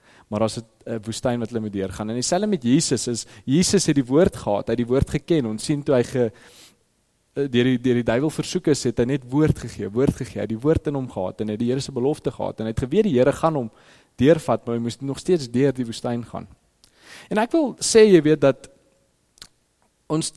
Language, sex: English, male